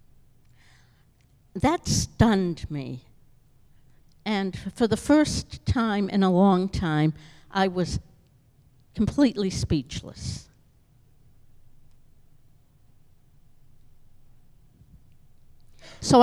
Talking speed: 65 wpm